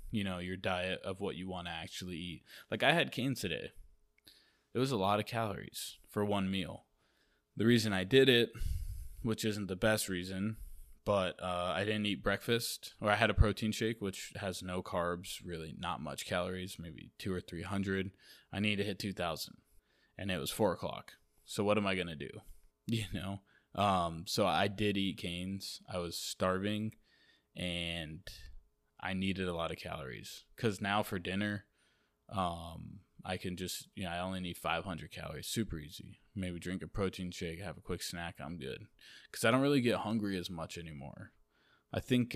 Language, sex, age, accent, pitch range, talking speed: English, male, 20-39, American, 90-105 Hz, 190 wpm